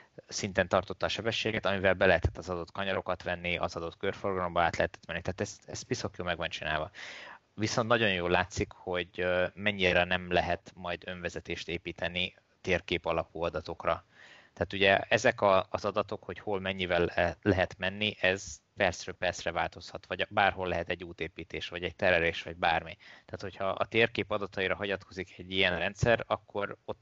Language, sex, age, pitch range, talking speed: Hungarian, male, 20-39, 90-105 Hz, 160 wpm